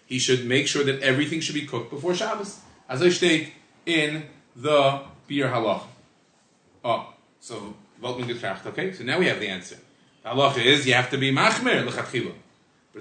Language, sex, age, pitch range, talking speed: English, male, 30-49, 140-180 Hz, 170 wpm